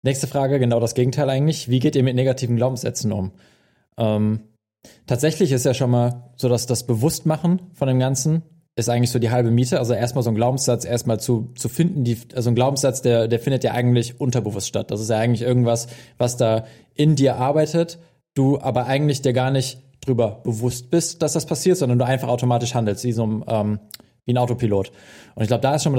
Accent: German